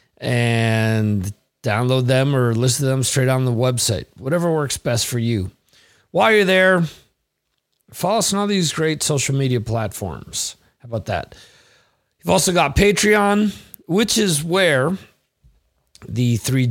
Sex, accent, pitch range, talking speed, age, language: male, American, 125-175 Hz, 145 wpm, 40-59, English